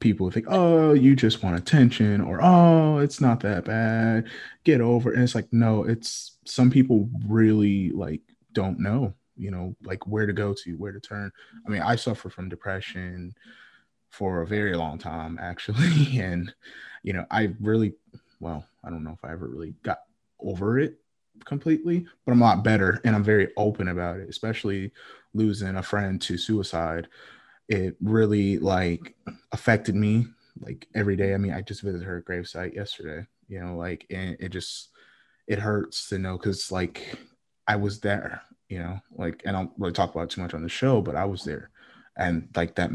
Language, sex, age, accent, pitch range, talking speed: English, male, 20-39, American, 90-110 Hz, 190 wpm